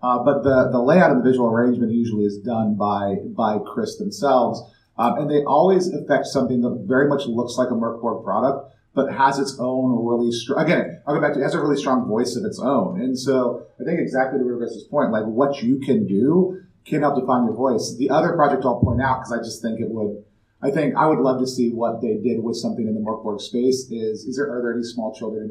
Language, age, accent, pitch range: English, 30-49, American, 120-145 Hz